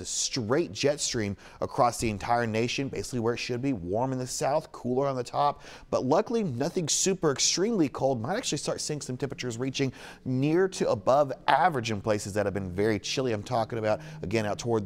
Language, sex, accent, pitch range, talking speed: English, male, American, 100-135 Hz, 205 wpm